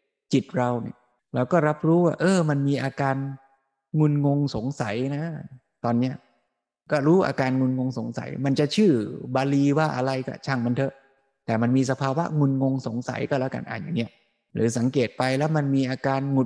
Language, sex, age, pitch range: Thai, male, 20-39, 120-145 Hz